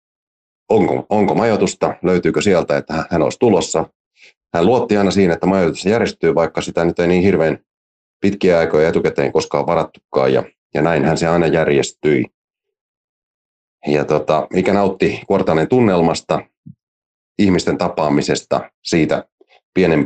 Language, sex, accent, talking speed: Finnish, male, native, 130 wpm